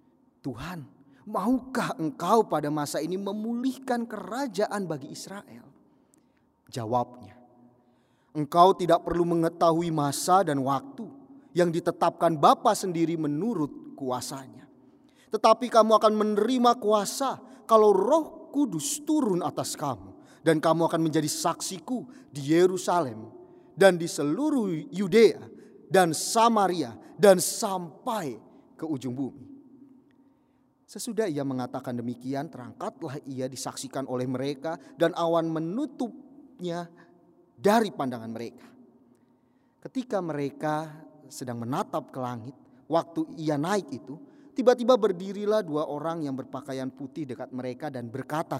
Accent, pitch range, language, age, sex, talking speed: native, 140-225 Hz, Indonesian, 30-49, male, 110 wpm